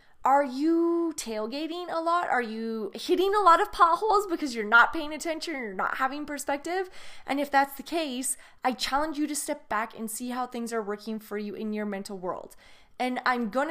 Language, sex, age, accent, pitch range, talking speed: English, female, 20-39, American, 225-300 Hz, 210 wpm